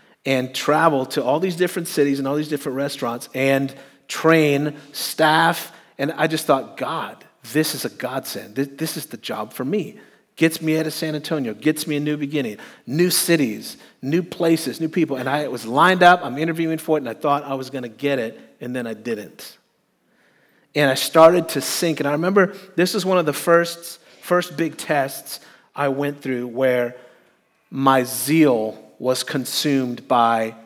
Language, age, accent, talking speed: English, 40-59, American, 190 wpm